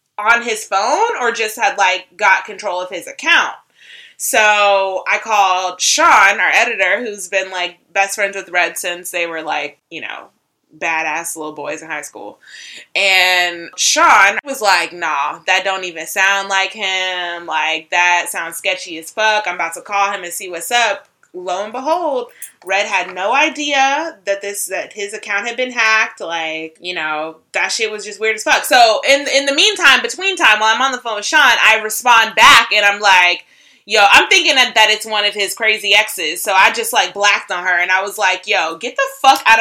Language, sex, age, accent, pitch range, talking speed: English, female, 20-39, American, 180-230 Hz, 205 wpm